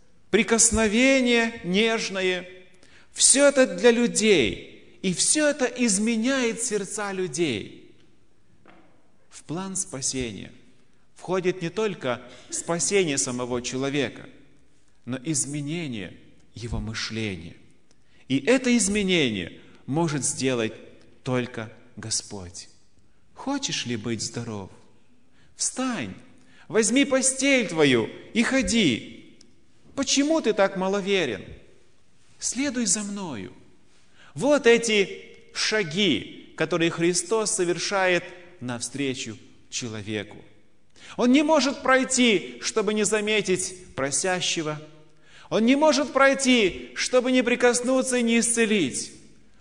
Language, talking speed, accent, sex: Russian, 90 wpm, native, male